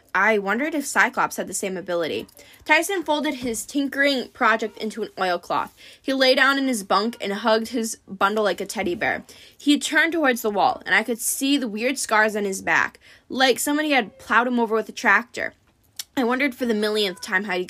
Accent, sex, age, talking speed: American, female, 10-29, 210 wpm